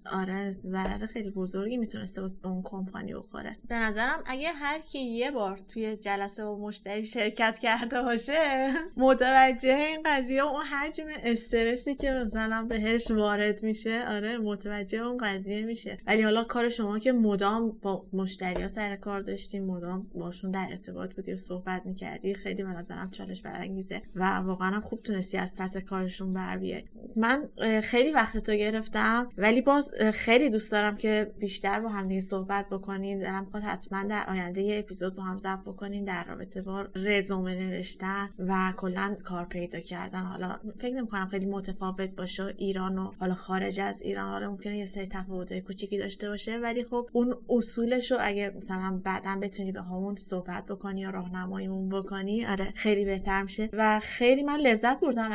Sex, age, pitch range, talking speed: female, 20-39, 190-225 Hz, 170 wpm